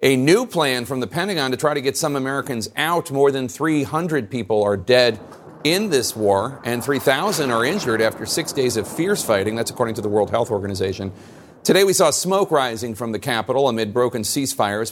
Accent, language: American, English